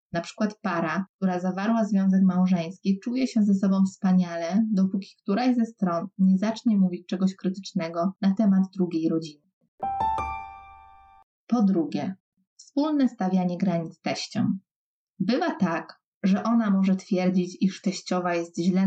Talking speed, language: 130 wpm, Polish